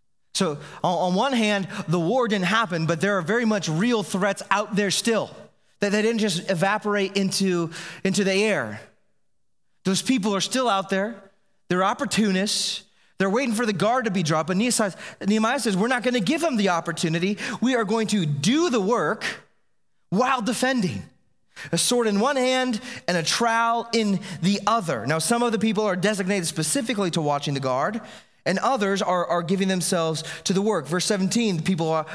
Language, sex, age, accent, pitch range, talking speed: English, male, 30-49, American, 180-235 Hz, 185 wpm